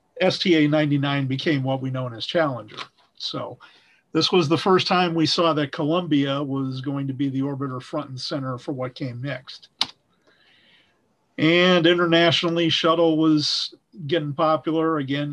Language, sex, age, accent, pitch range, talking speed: English, male, 50-69, American, 140-165 Hz, 145 wpm